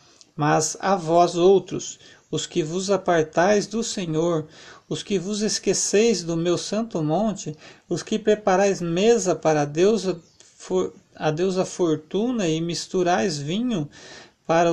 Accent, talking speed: Brazilian, 125 wpm